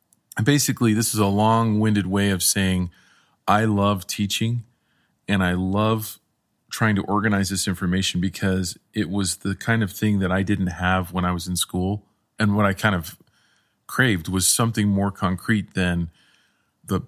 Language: English